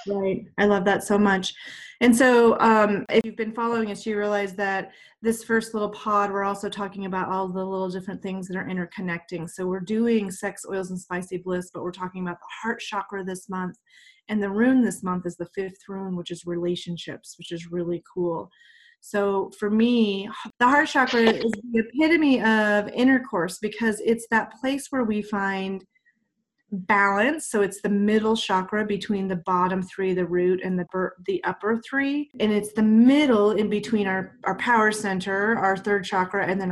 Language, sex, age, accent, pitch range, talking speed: English, female, 30-49, American, 185-220 Hz, 190 wpm